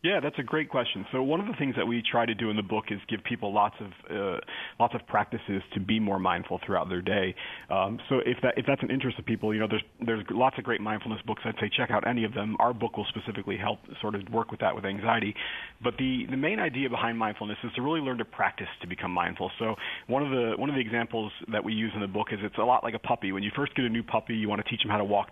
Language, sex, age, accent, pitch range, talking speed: English, male, 40-59, American, 105-120 Hz, 295 wpm